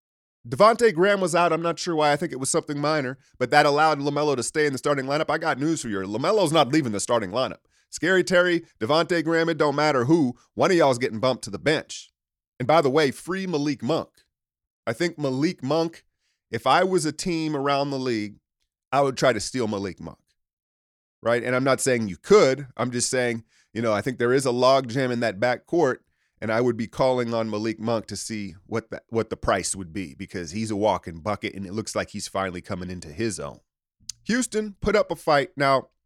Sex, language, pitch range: male, English, 110-155 Hz